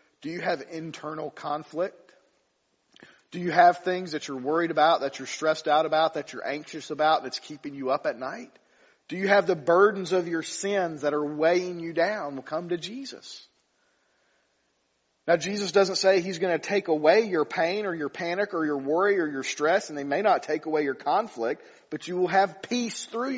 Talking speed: 205 wpm